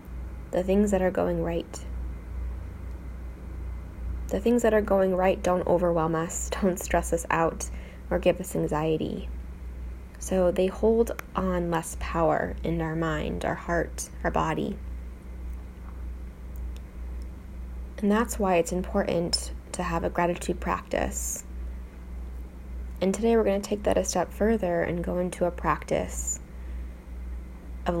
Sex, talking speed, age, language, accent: female, 135 wpm, 10-29, English, American